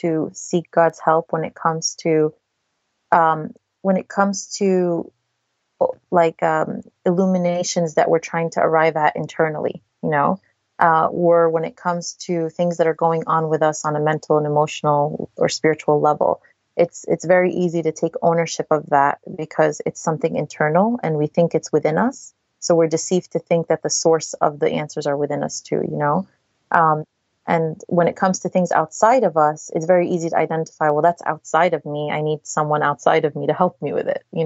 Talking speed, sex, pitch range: 200 wpm, female, 155-175 Hz